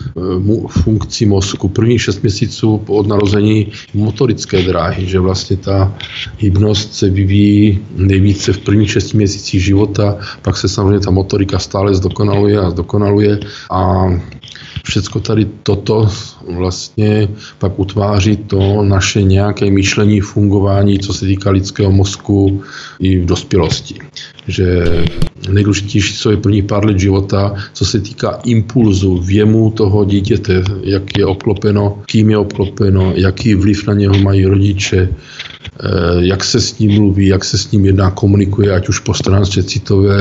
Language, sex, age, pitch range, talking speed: Czech, male, 50-69, 95-110 Hz, 140 wpm